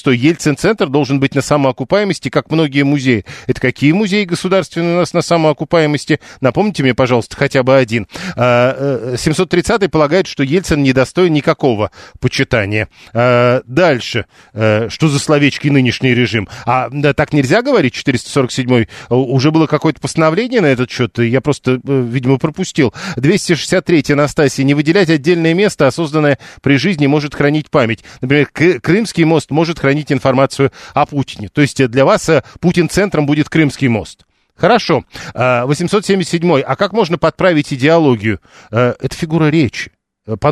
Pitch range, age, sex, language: 130-165 Hz, 40-59, male, Russian